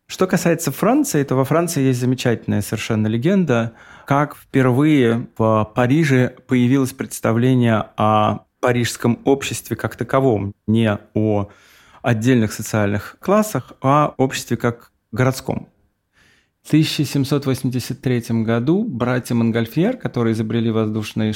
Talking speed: 105 wpm